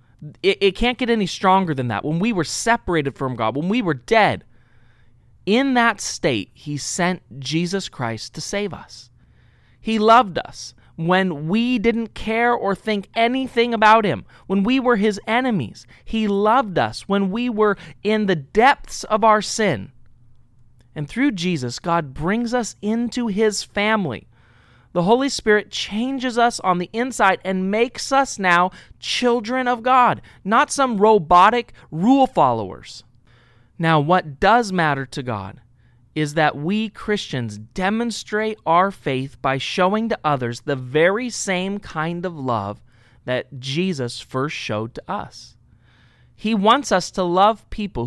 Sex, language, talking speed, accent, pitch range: male, English, 150 wpm, American, 130-220 Hz